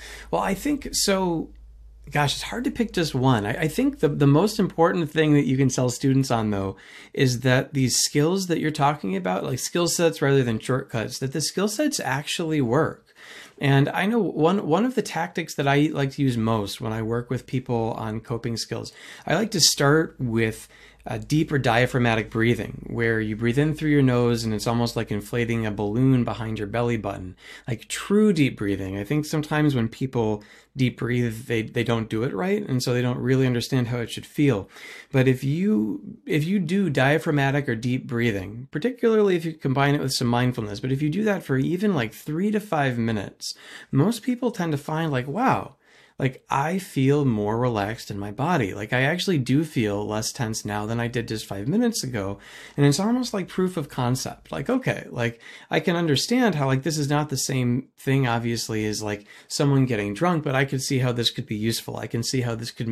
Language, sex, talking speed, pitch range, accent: English, male, 215 wpm, 115-155 Hz, American